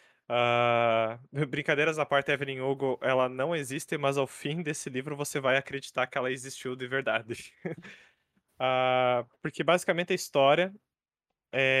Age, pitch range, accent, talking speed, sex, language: 20-39, 130-160 Hz, Brazilian, 130 wpm, male, Portuguese